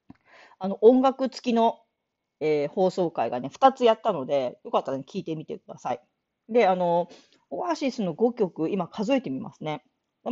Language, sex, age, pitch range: Japanese, female, 40-59, 180-275 Hz